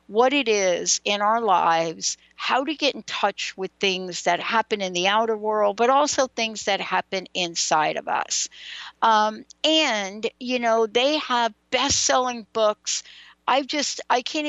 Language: English